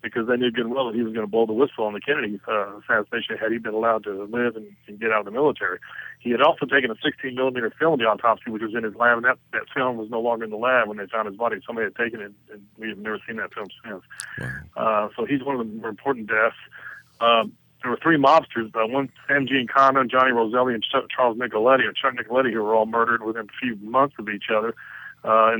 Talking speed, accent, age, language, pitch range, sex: 265 wpm, American, 40-59, English, 110-125 Hz, male